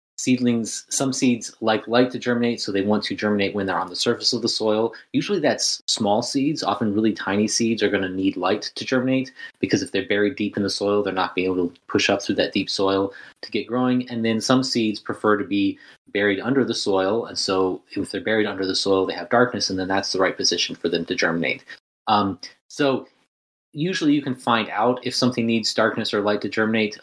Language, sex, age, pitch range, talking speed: English, male, 30-49, 95-115 Hz, 230 wpm